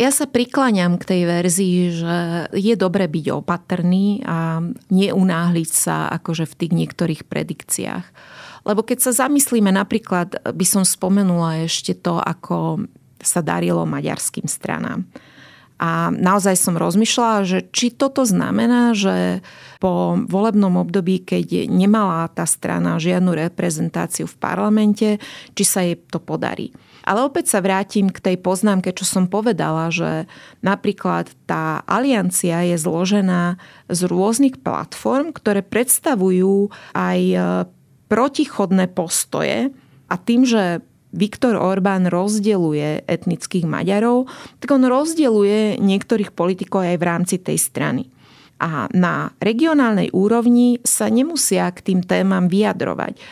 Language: Slovak